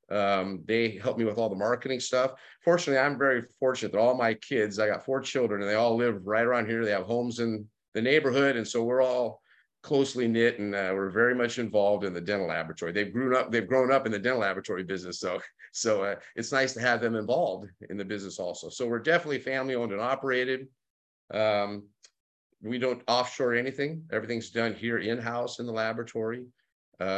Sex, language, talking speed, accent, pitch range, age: male, English, 200 wpm, American, 105-125 Hz, 50-69